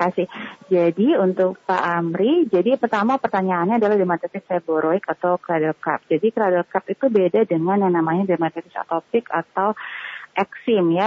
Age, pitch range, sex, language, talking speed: 30-49, 165-205 Hz, female, Indonesian, 135 wpm